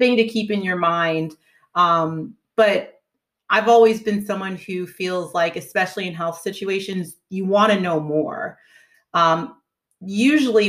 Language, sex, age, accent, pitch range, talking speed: English, female, 30-49, American, 165-195 Hz, 140 wpm